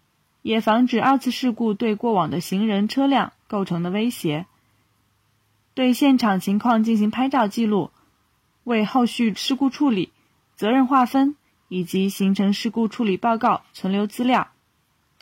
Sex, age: female, 20-39